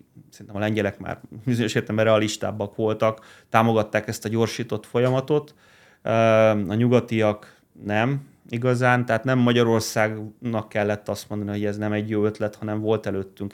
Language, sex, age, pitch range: Hungarian, male, 30-49, 105-125 Hz